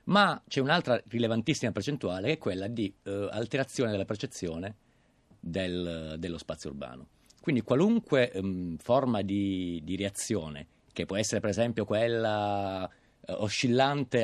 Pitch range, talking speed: 90-115 Hz, 130 wpm